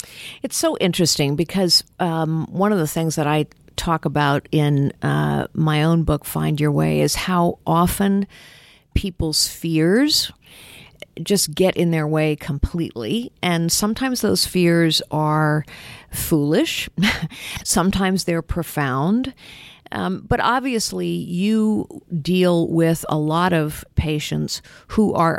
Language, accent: English, American